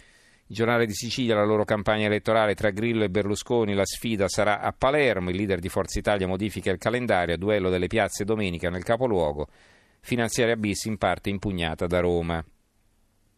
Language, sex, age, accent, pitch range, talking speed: Italian, male, 40-59, native, 95-115 Hz, 175 wpm